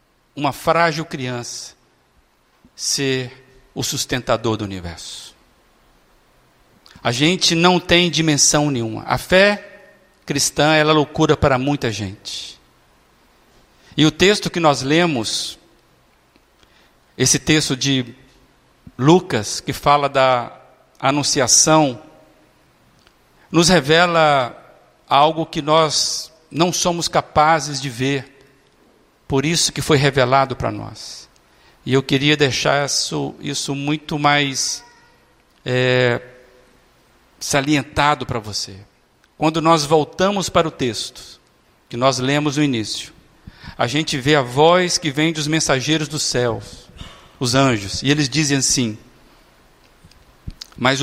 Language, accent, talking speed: Portuguese, Brazilian, 110 wpm